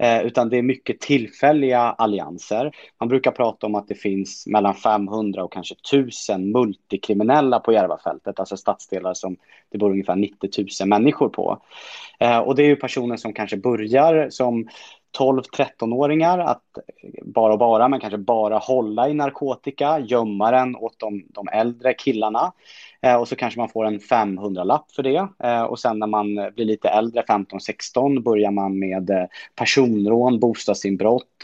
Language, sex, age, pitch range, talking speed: Swedish, male, 30-49, 105-125 Hz, 160 wpm